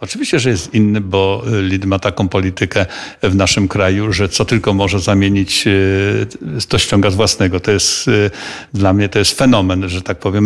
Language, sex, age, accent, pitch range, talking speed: Polish, male, 50-69, native, 95-115 Hz, 180 wpm